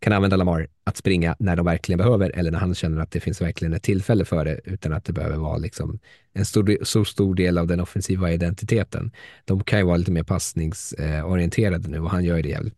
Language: Swedish